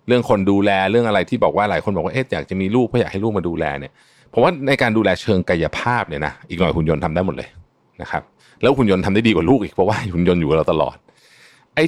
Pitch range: 85-120 Hz